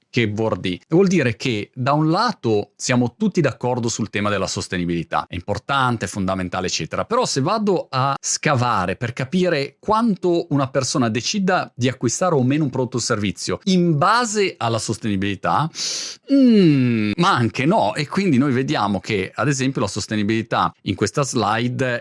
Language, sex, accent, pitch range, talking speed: Italian, male, native, 105-145 Hz, 160 wpm